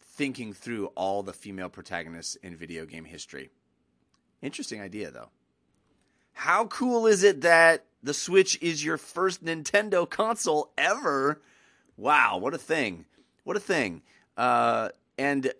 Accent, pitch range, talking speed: American, 90-120 Hz, 135 wpm